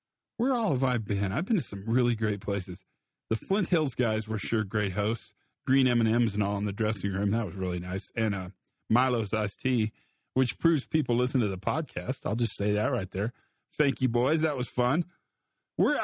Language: English